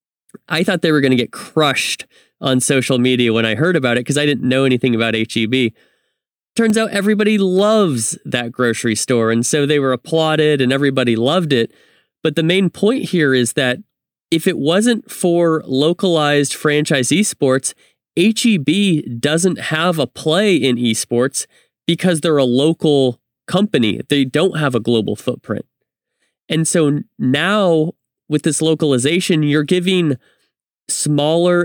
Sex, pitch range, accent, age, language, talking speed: male, 130-175 Hz, American, 20-39, English, 150 wpm